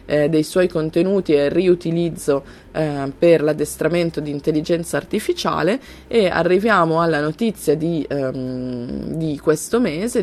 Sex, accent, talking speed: female, native, 115 wpm